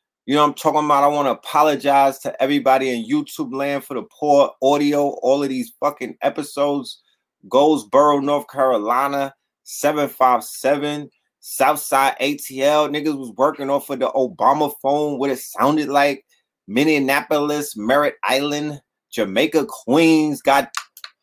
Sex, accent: male, American